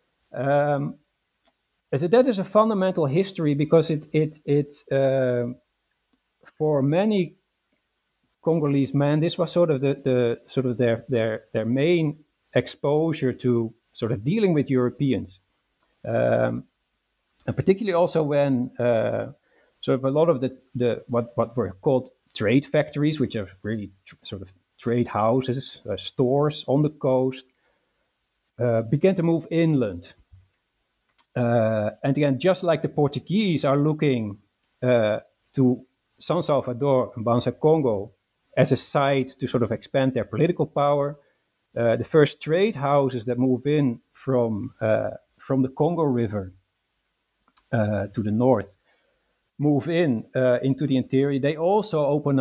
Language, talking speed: English, 145 wpm